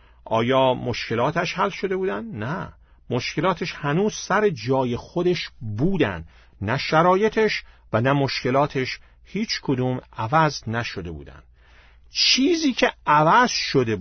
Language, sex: Persian, male